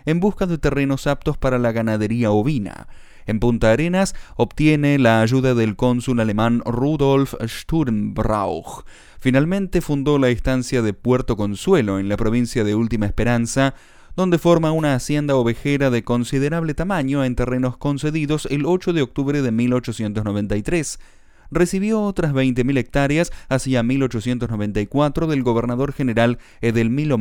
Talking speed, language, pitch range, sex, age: 130 wpm, Spanish, 115-150 Hz, male, 30-49